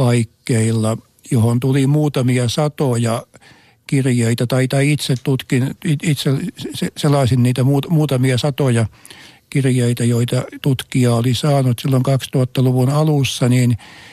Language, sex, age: Finnish, male, 60-79